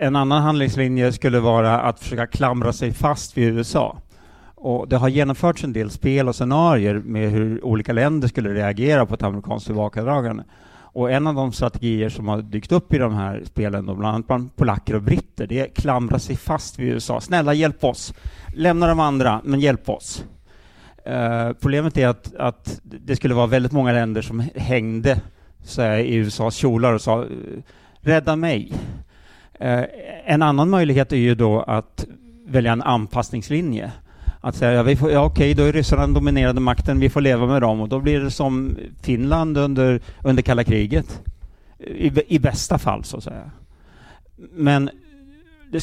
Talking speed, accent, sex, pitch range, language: 175 wpm, Norwegian, male, 115-145 Hz, Swedish